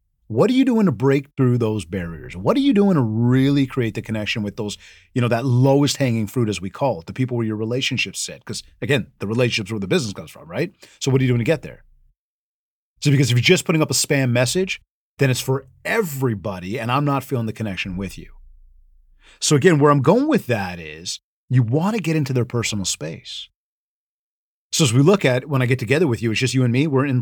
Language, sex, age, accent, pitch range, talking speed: English, male, 30-49, American, 110-145 Hz, 240 wpm